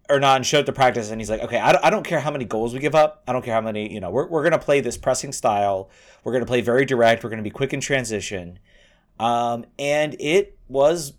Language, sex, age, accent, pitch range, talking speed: English, male, 30-49, American, 110-140 Hz, 265 wpm